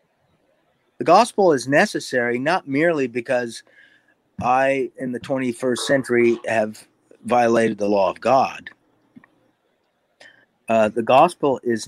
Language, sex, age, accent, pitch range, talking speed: English, male, 50-69, American, 115-150 Hz, 110 wpm